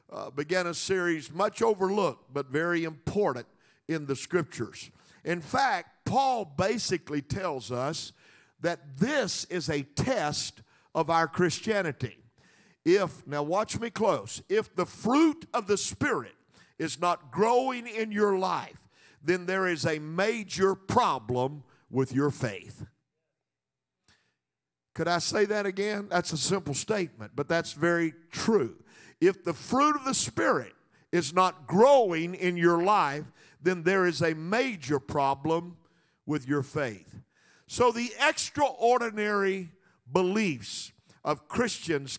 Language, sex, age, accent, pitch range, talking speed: English, male, 50-69, American, 150-205 Hz, 130 wpm